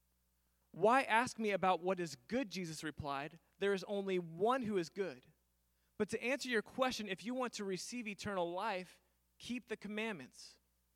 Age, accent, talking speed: 30-49, American, 170 wpm